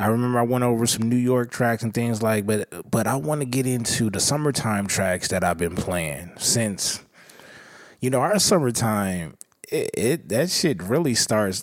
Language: English